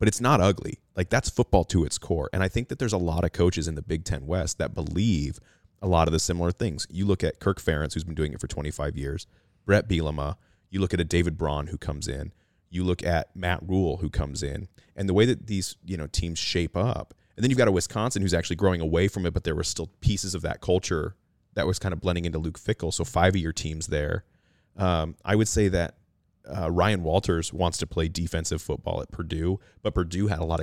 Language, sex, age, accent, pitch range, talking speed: English, male, 30-49, American, 80-100 Hz, 250 wpm